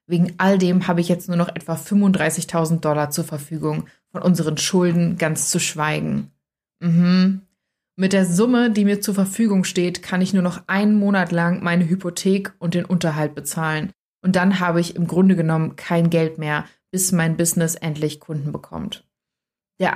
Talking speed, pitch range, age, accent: 175 wpm, 165-190 Hz, 20-39, German